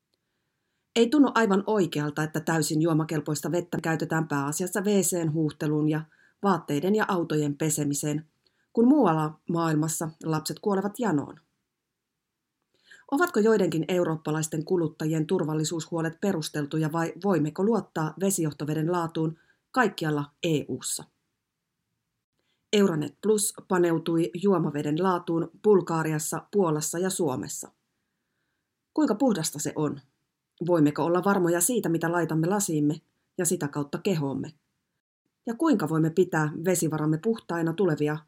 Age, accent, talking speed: 30-49, native, 105 wpm